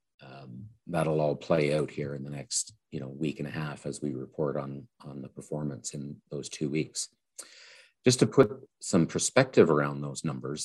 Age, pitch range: 50-69, 70-85 Hz